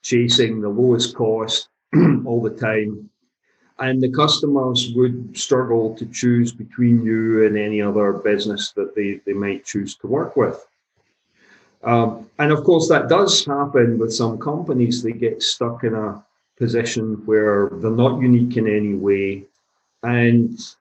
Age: 50-69